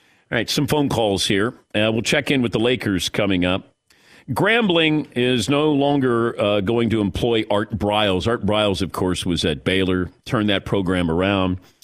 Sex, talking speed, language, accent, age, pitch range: male, 180 wpm, English, American, 40-59, 95-145 Hz